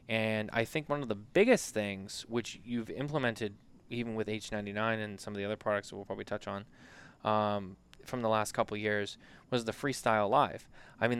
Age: 20-39